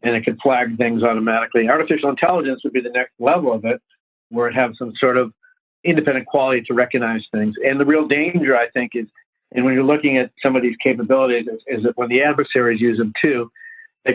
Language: English